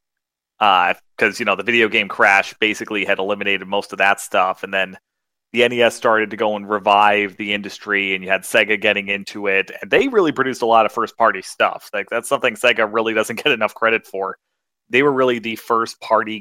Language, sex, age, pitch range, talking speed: English, male, 30-49, 100-115 Hz, 215 wpm